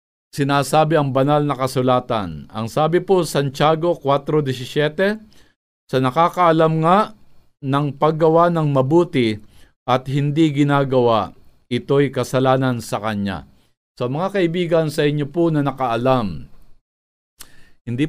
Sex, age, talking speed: male, 50-69, 110 wpm